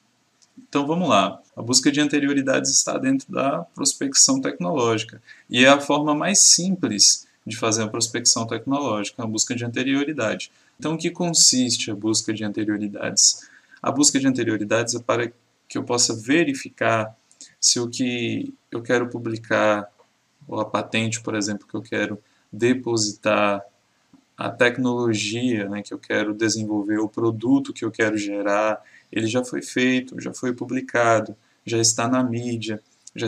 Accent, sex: Brazilian, male